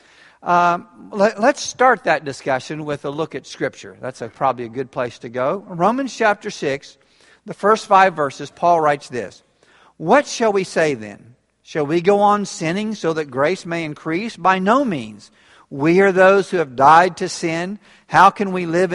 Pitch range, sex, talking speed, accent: 145-195 Hz, male, 185 wpm, American